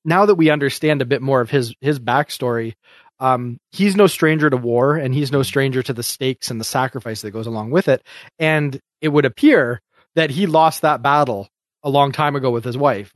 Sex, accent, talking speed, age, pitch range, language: male, American, 220 wpm, 30-49, 125-145 Hz, English